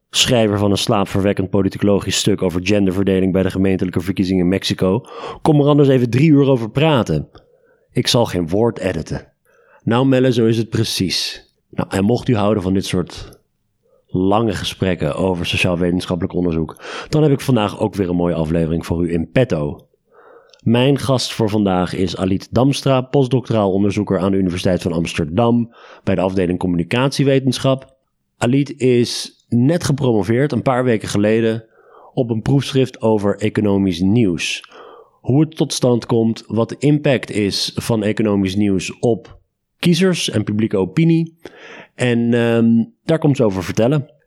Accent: Dutch